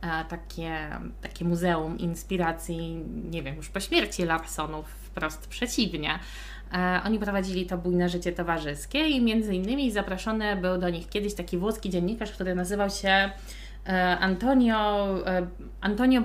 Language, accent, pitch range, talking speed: Polish, native, 180-225 Hz, 120 wpm